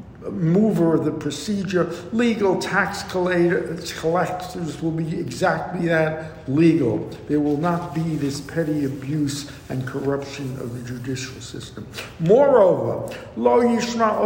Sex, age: male, 60-79